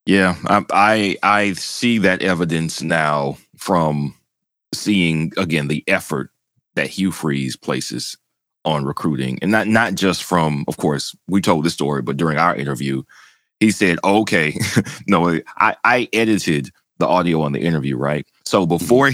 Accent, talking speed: American, 155 wpm